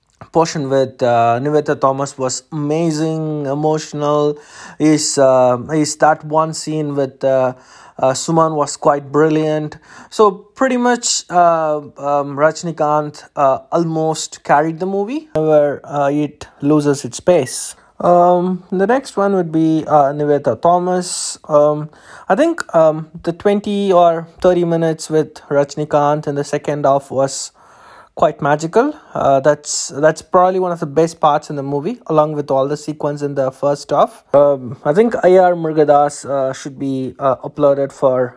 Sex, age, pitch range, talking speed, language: male, 20-39, 135-170 Hz, 150 wpm, English